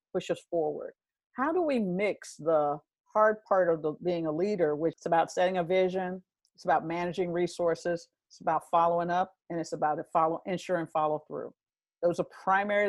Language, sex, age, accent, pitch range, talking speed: English, female, 50-69, American, 160-200 Hz, 175 wpm